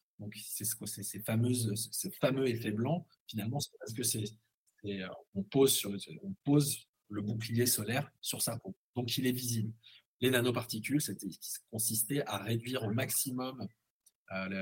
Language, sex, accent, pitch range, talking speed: French, male, French, 110-150 Hz, 165 wpm